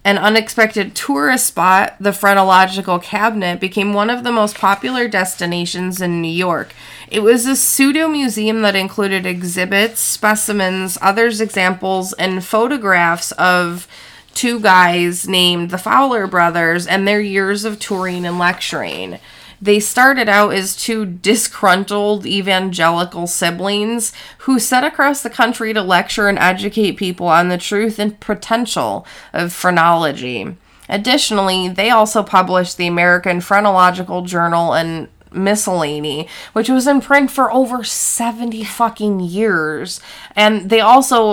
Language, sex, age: English, female, 20-39